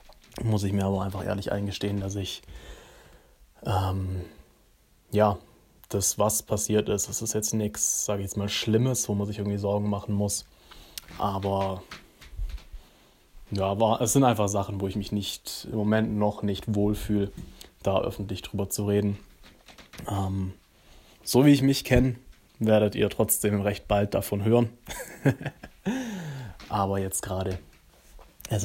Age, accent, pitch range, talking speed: 20-39, German, 100-110 Hz, 145 wpm